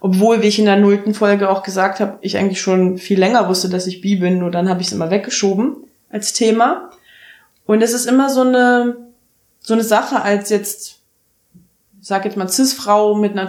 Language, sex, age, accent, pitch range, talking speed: German, female, 20-39, German, 190-225 Hz, 210 wpm